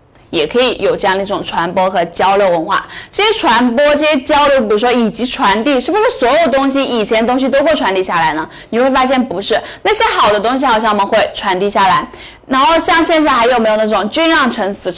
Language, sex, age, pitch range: Chinese, female, 10-29, 205-270 Hz